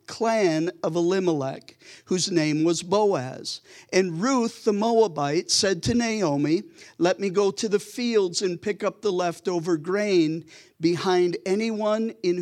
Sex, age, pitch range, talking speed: male, 50-69, 170-215 Hz, 140 wpm